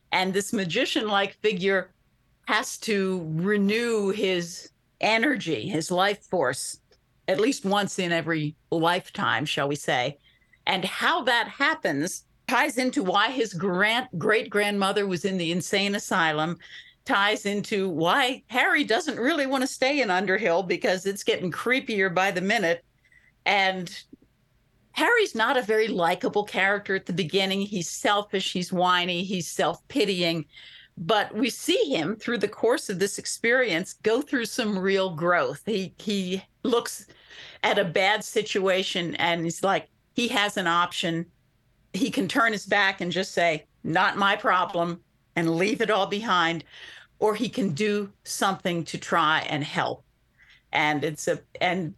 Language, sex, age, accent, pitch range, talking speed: English, female, 50-69, American, 175-220 Hz, 145 wpm